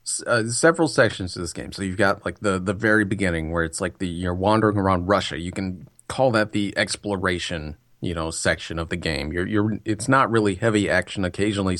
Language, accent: English, American